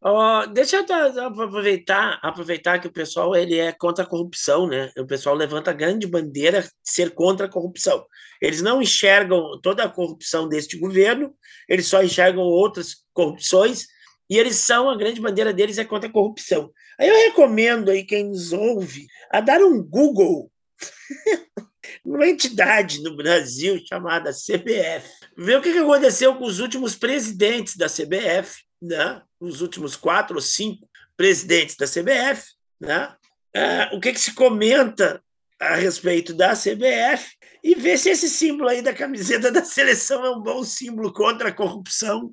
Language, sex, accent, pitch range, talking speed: Portuguese, male, Brazilian, 180-270 Hz, 160 wpm